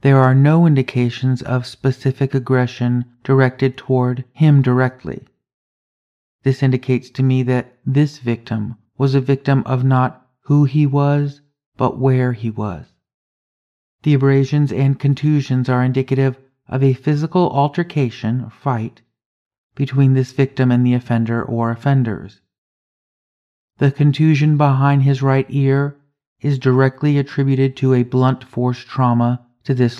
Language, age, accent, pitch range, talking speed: English, 40-59, American, 125-140 Hz, 130 wpm